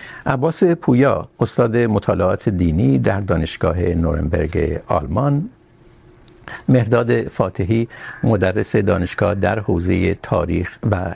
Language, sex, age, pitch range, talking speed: Urdu, male, 60-79, 90-120 Hz, 90 wpm